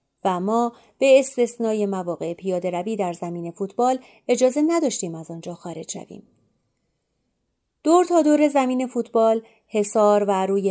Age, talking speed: 30-49, 135 wpm